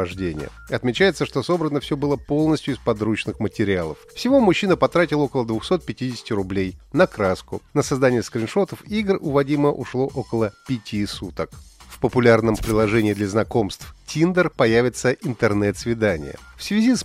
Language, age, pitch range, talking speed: Russian, 30-49, 110-165 Hz, 135 wpm